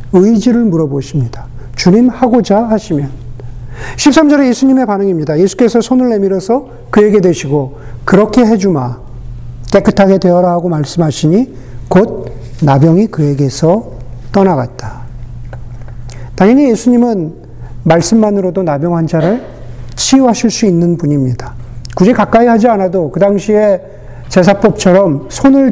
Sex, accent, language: male, native, Korean